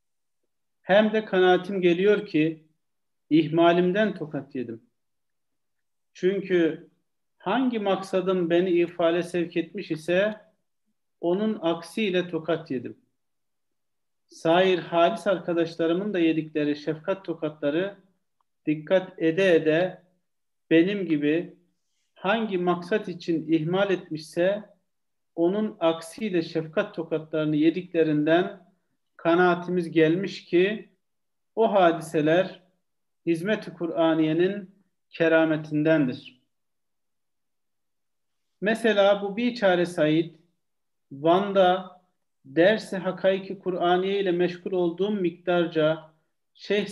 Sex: male